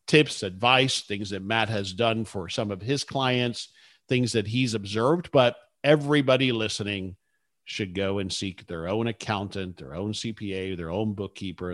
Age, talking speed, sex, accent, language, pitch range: 50-69, 165 wpm, male, American, English, 100-130 Hz